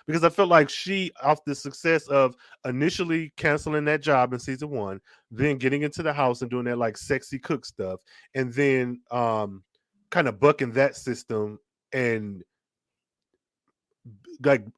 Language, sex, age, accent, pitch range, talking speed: English, male, 20-39, American, 120-150 Hz, 150 wpm